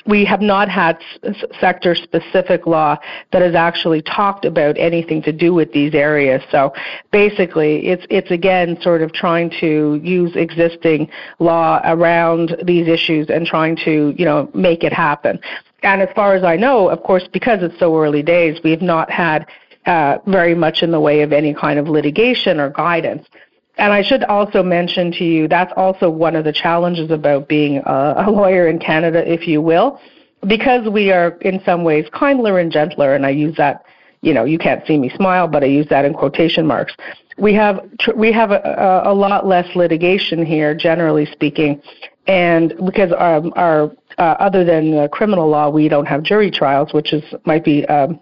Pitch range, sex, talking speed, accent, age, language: 155-185 Hz, female, 195 wpm, American, 50-69, English